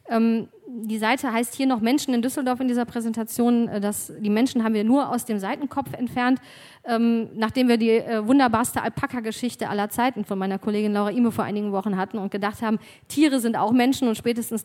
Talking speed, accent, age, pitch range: 185 wpm, German, 40-59, 205-240 Hz